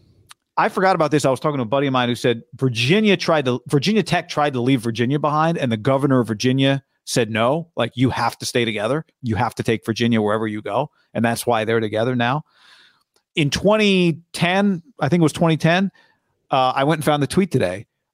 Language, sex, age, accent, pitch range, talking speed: English, male, 40-59, American, 125-165 Hz, 220 wpm